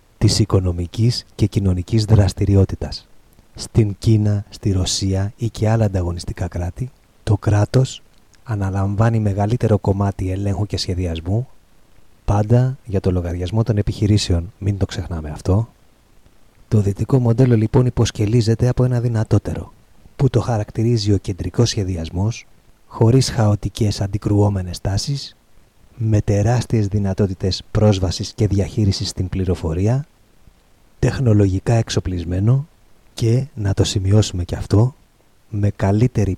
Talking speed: 110 wpm